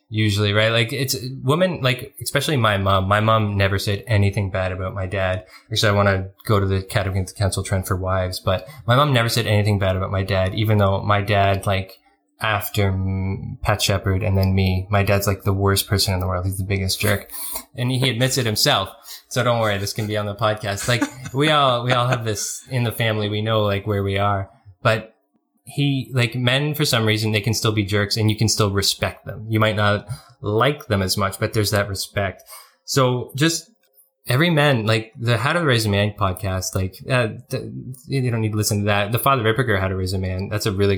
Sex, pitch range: male, 100-120 Hz